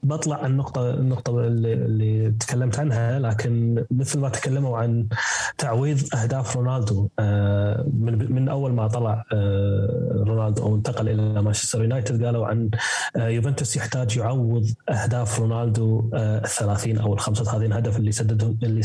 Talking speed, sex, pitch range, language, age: 120 wpm, male, 110-135 Hz, Arabic, 20-39